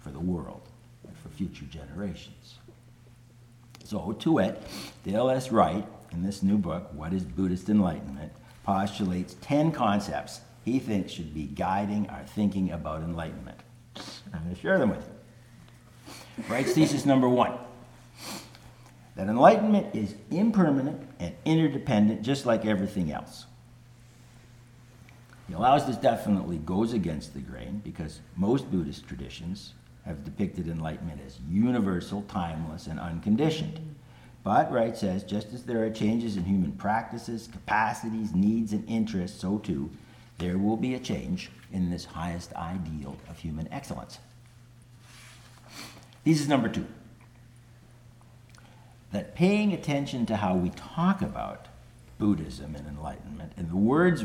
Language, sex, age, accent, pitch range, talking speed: English, male, 60-79, American, 90-120 Hz, 135 wpm